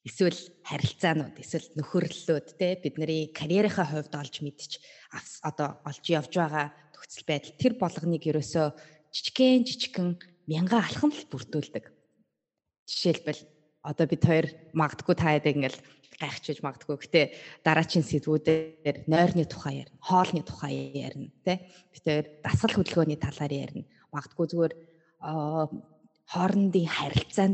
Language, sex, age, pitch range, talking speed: English, female, 20-39, 150-185 Hz, 115 wpm